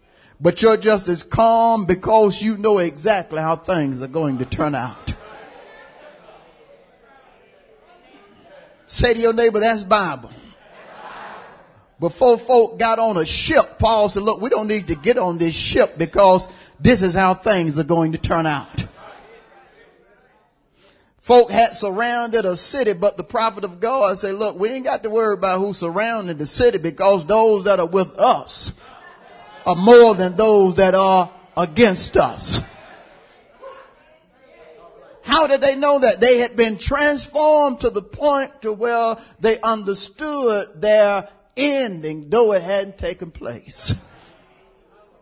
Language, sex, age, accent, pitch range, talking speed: English, male, 40-59, American, 185-235 Hz, 145 wpm